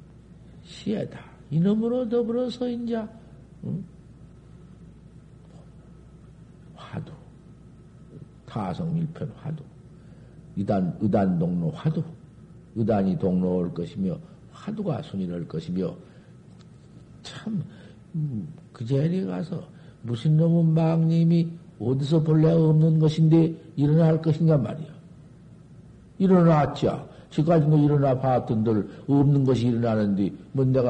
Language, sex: Korean, male